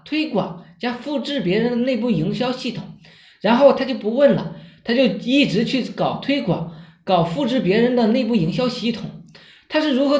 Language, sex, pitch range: Chinese, male, 195-275 Hz